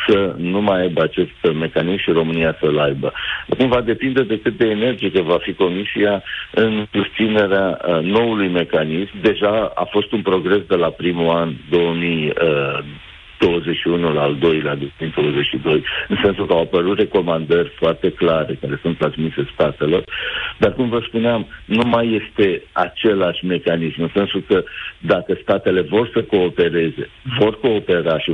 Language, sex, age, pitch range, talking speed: Romanian, male, 60-79, 80-105 Hz, 155 wpm